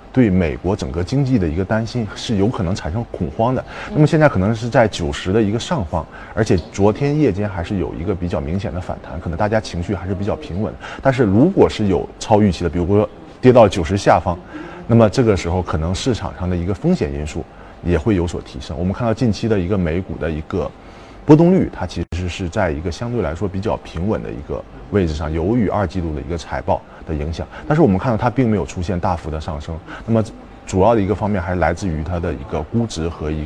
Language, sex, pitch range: Chinese, male, 85-110 Hz